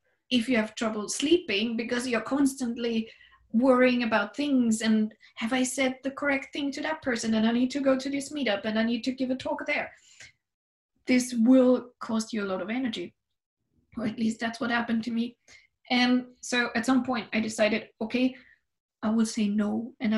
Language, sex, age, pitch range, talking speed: English, female, 20-39, 215-250 Hz, 195 wpm